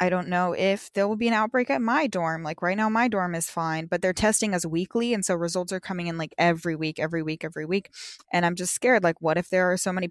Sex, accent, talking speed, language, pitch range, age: female, American, 285 wpm, English, 165-195 Hz, 10-29